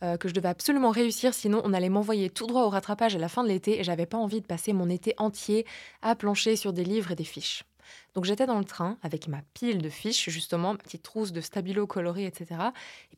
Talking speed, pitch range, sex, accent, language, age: 255 wpm, 185-230 Hz, female, French, French, 20-39